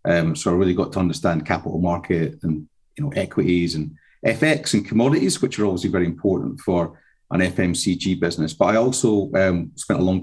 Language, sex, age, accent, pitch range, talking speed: English, male, 40-59, British, 85-105 Hz, 195 wpm